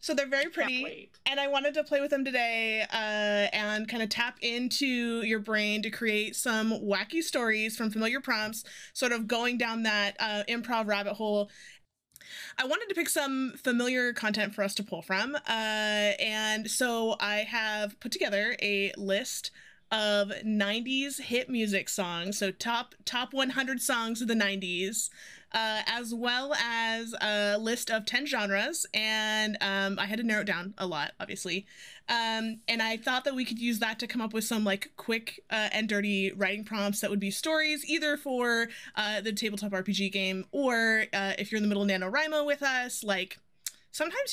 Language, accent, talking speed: English, American, 185 wpm